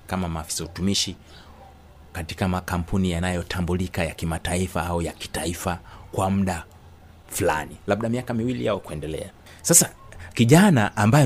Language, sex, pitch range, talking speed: Swahili, male, 85-120 Hz, 115 wpm